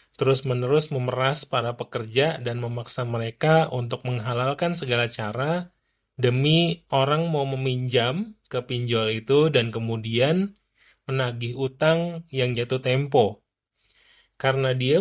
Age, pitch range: 20-39, 115-135 Hz